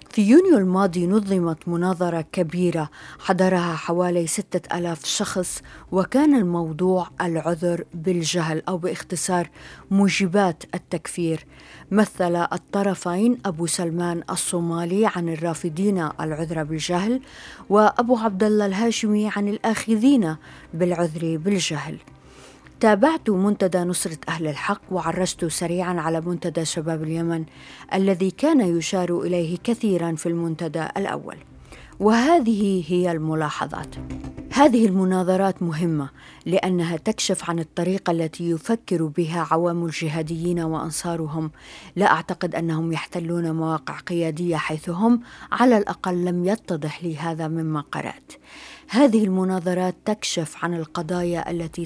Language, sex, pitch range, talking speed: Arabic, female, 165-195 Hz, 105 wpm